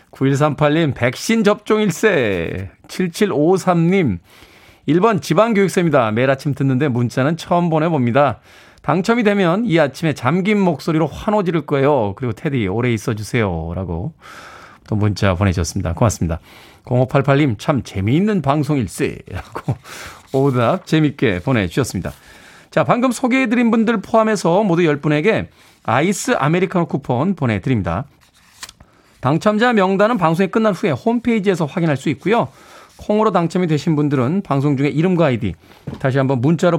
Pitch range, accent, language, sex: 130-190 Hz, native, Korean, male